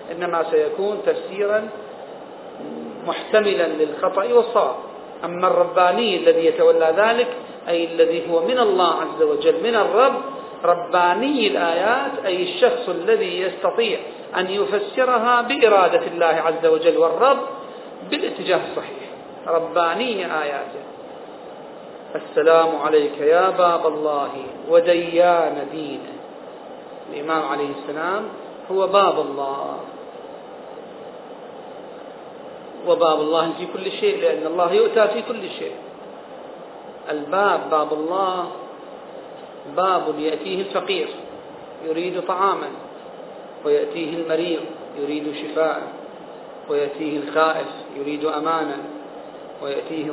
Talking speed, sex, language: 95 wpm, male, Arabic